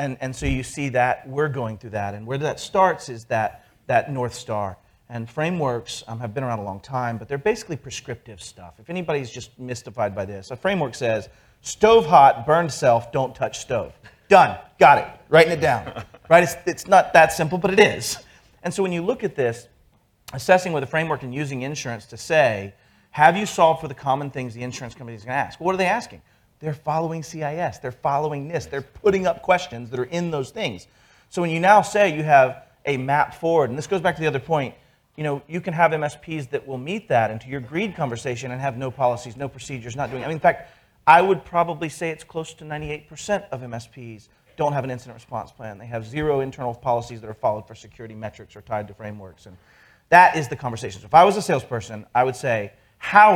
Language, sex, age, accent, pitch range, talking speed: English, male, 40-59, American, 115-160 Hz, 230 wpm